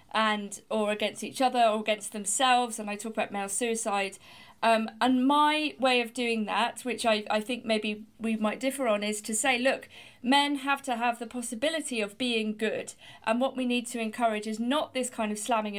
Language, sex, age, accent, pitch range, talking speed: English, female, 40-59, British, 210-250 Hz, 210 wpm